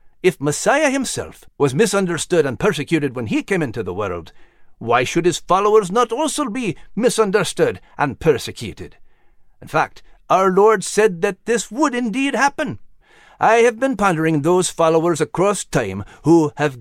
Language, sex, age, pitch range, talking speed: English, male, 50-69, 150-240 Hz, 155 wpm